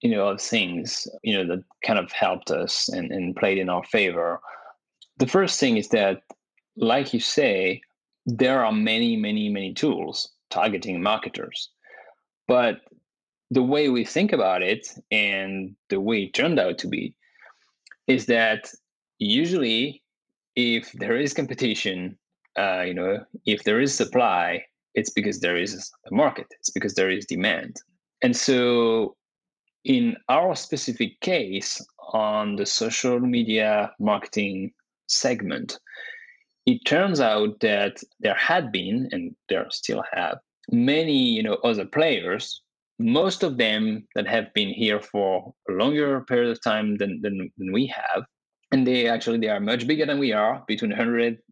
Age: 20-39